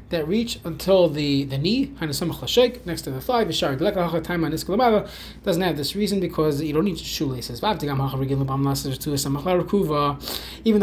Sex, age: male, 20-39